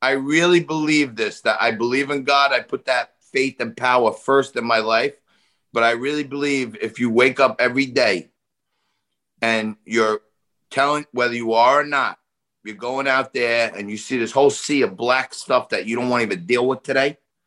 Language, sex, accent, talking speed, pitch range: English, male, American, 205 wpm, 115-140 Hz